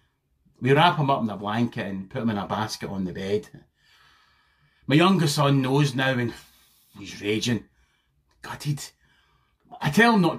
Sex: male